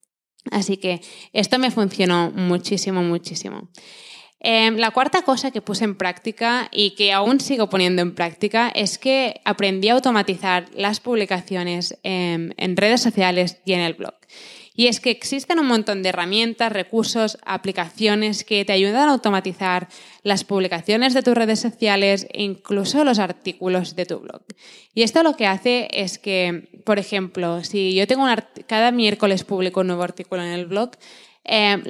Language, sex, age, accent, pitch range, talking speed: Spanish, female, 20-39, Spanish, 185-225 Hz, 165 wpm